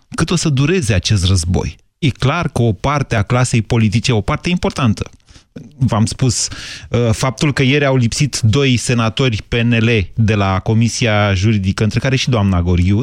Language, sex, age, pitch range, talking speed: Romanian, male, 30-49, 105-135 Hz, 165 wpm